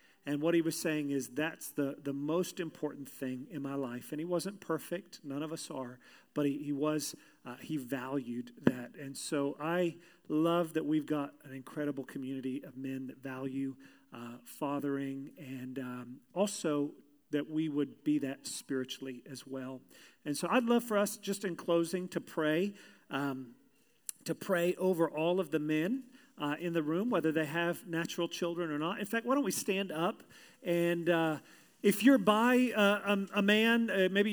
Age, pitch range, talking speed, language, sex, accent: 40-59, 145-190 Hz, 185 wpm, English, male, American